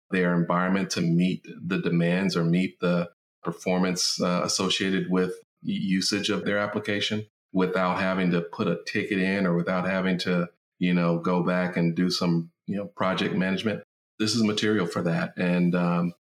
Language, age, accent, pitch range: English, 40-59, American, 85-95 Hz